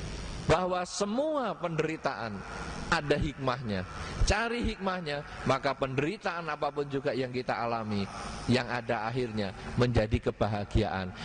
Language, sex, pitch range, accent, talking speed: English, male, 115-155 Hz, Indonesian, 100 wpm